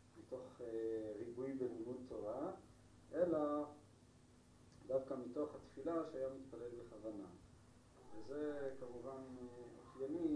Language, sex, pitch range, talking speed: Hebrew, male, 110-130 Hz, 75 wpm